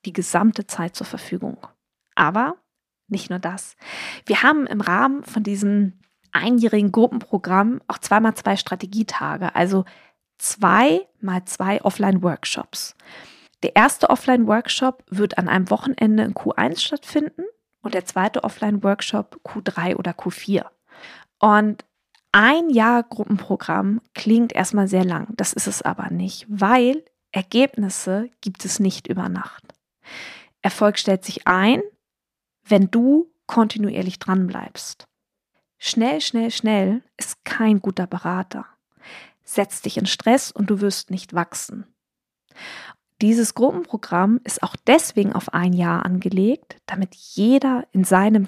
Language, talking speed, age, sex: German, 125 wpm, 20-39, female